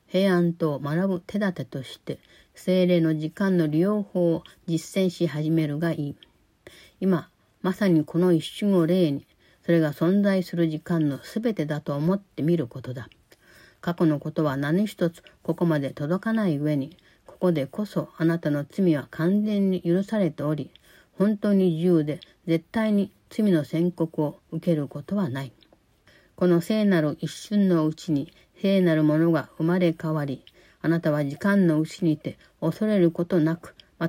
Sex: female